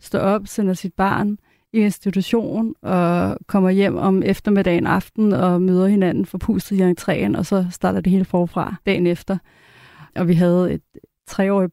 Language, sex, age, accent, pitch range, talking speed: Danish, female, 30-49, native, 180-210 Hz, 170 wpm